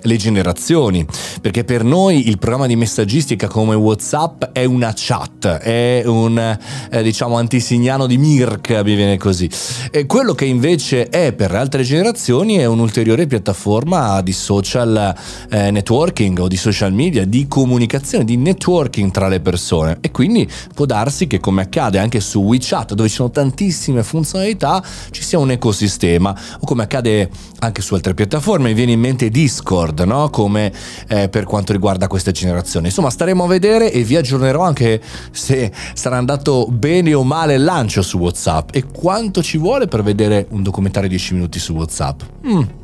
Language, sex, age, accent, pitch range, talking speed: Italian, male, 30-49, native, 100-150 Hz, 170 wpm